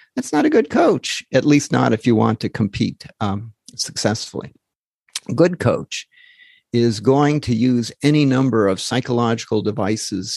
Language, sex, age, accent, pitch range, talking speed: English, male, 50-69, American, 110-125 Hz, 155 wpm